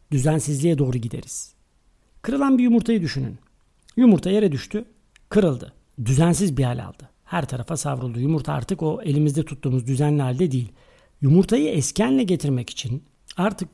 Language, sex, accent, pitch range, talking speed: Turkish, male, native, 140-185 Hz, 135 wpm